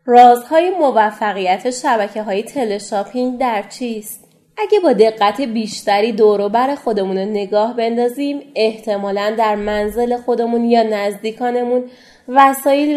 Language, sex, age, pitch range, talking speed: Persian, female, 20-39, 200-270 Hz, 95 wpm